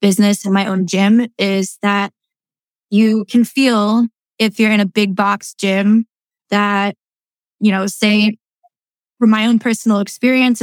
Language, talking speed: English, 145 wpm